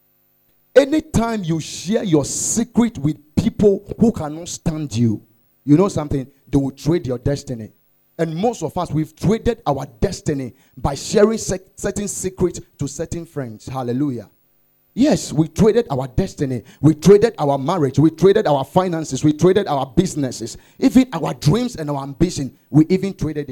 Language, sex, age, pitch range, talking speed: English, male, 50-69, 135-190 Hz, 155 wpm